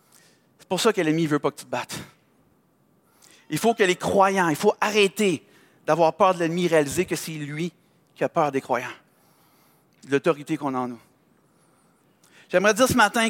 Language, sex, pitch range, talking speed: French, male, 155-200 Hz, 195 wpm